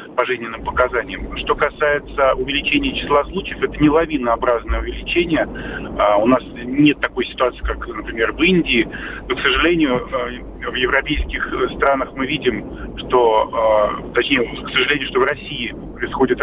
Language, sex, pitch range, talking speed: Russian, male, 125-165 Hz, 135 wpm